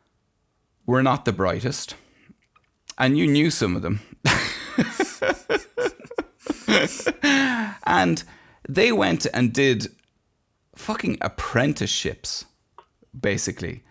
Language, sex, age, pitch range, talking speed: English, male, 30-49, 105-130 Hz, 80 wpm